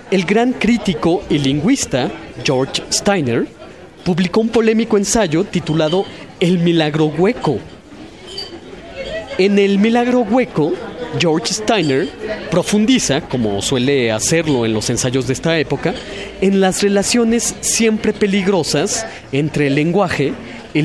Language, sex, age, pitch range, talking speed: Spanish, male, 30-49, 145-200 Hz, 115 wpm